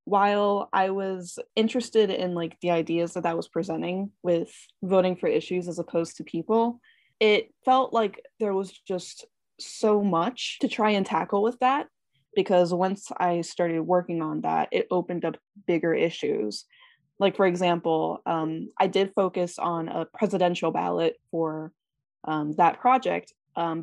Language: English